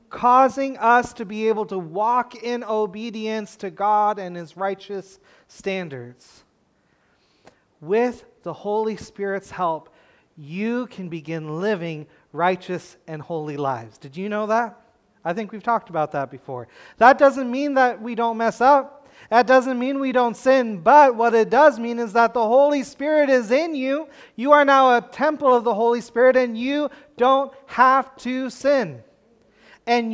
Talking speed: 165 wpm